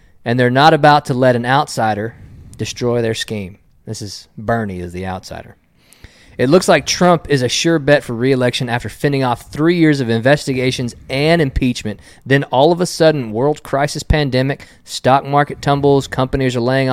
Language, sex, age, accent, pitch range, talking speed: English, male, 20-39, American, 110-150 Hz, 175 wpm